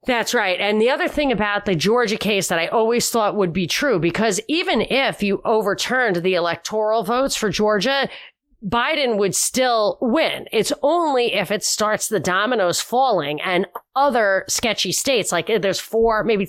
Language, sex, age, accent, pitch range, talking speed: English, female, 30-49, American, 190-245 Hz, 170 wpm